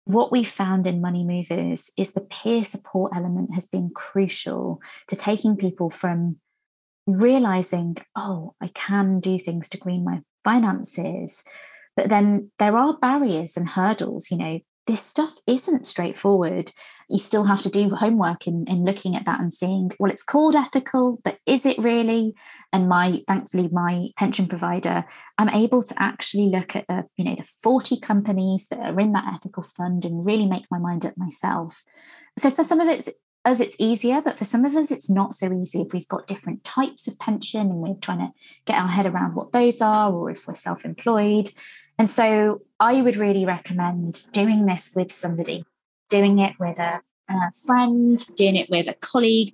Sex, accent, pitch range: female, British, 180-225 Hz